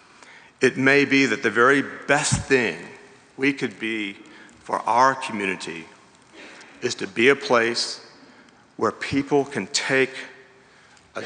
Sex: male